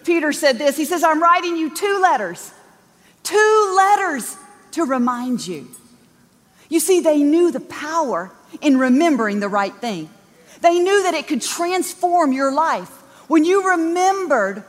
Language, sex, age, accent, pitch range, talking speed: English, female, 40-59, American, 245-355 Hz, 150 wpm